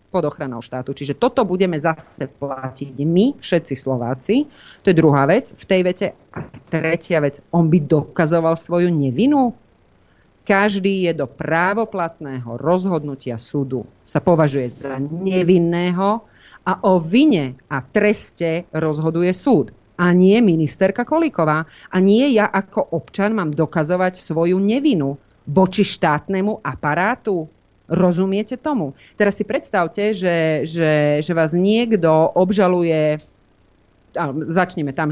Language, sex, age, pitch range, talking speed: Slovak, female, 40-59, 150-205 Hz, 125 wpm